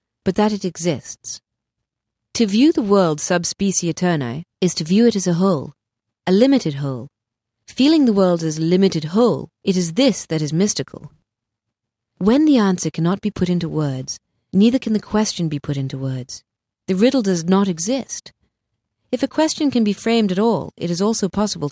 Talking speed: 180 wpm